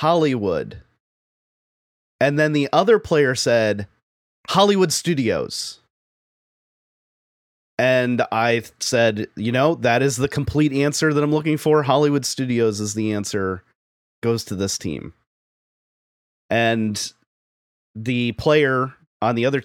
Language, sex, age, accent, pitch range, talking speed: English, male, 30-49, American, 100-130 Hz, 115 wpm